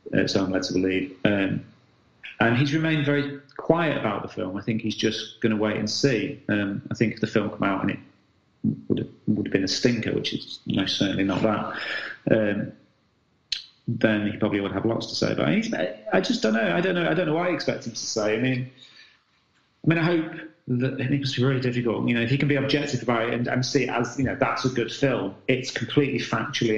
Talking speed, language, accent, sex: 240 wpm, English, British, male